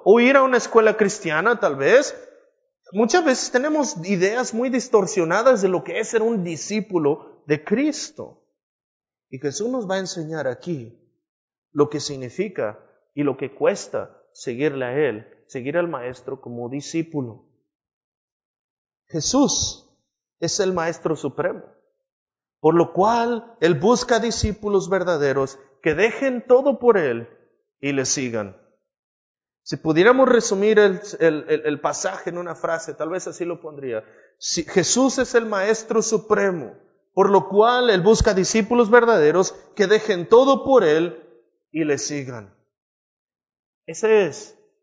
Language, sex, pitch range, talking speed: Spanish, male, 155-240 Hz, 135 wpm